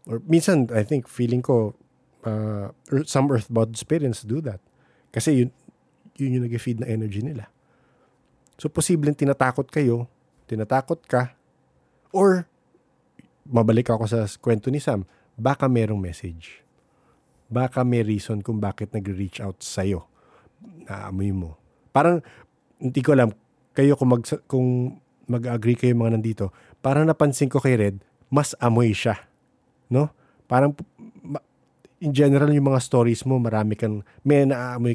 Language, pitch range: English, 110-140 Hz